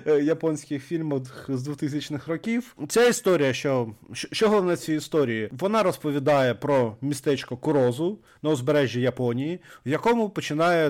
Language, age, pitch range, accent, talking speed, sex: Ukrainian, 30-49, 130-160 Hz, native, 125 wpm, male